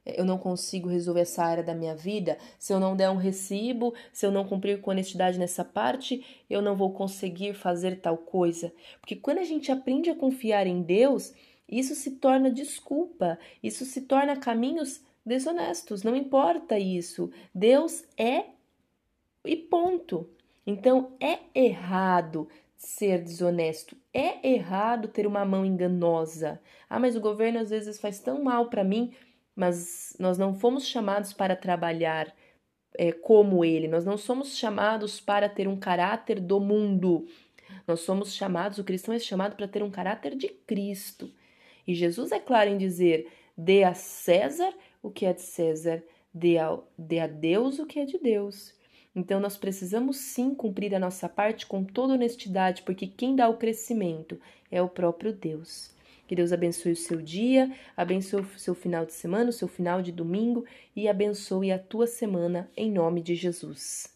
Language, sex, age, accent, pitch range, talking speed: Portuguese, female, 20-39, Brazilian, 180-235 Hz, 165 wpm